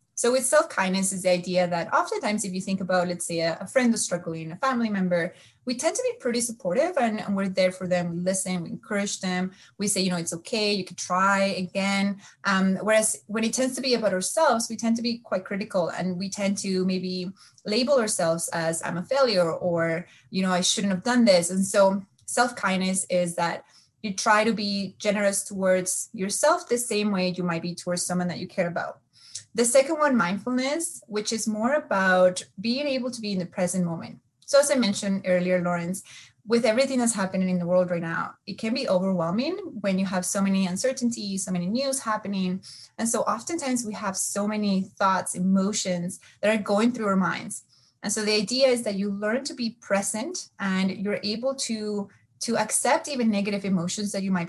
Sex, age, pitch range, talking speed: female, 20-39, 185-225 Hz, 210 wpm